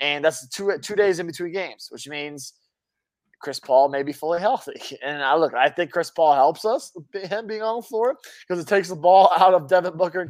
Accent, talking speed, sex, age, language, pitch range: American, 240 wpm, male, 20-39, English, 140-185 Hz